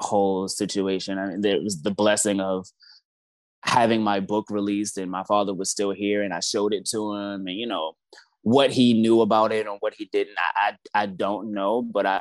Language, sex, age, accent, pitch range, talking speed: English, male, 20-39, American, 100-120 Hz, 205 wpm